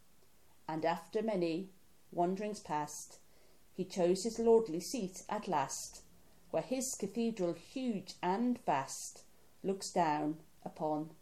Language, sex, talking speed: English, female, 110 wpm